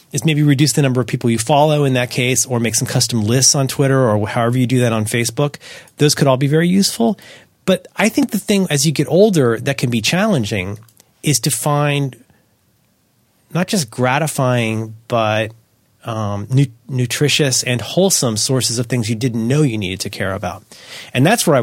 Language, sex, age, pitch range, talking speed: English, male, 30-49, 115-150 Hz, 200 wpm